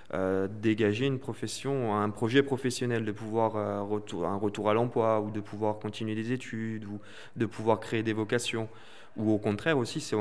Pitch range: 105-120 Hz